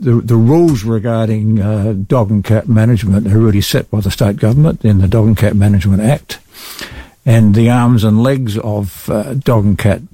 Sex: male